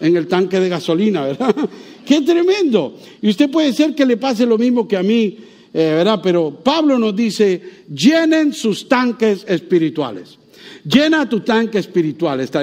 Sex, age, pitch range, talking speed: male, 50-69, 170-245 Hz, 165 wpm